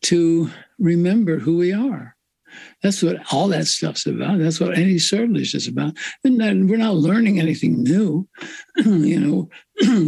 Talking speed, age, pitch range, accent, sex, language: 150 wpm, 60-79, 155-200 Hz, American, male, English